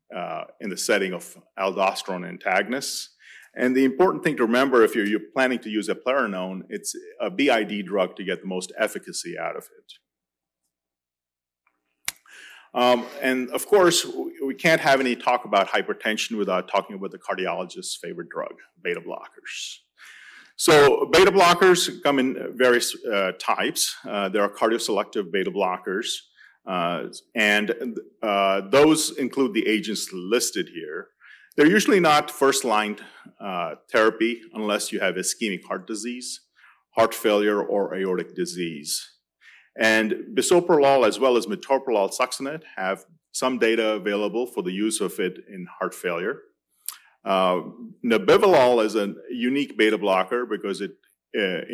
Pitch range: 100-140 Hz